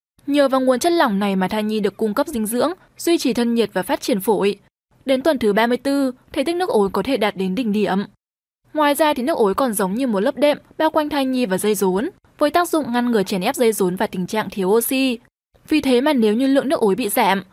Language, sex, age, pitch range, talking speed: Vietnamese, female, 10-29, 210-290 Hz, 265 wpm